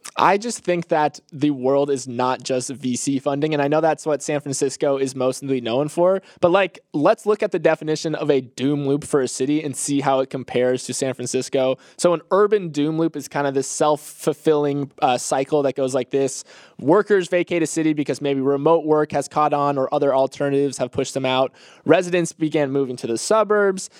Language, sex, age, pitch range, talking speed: English, male, 20-39, 135-165 Hz, 210 wpm